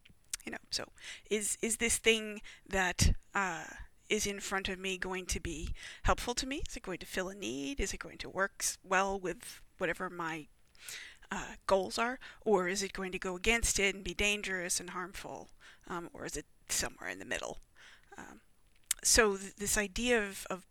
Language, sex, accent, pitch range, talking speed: English, female, American, 190-225 Hz, 195 wpm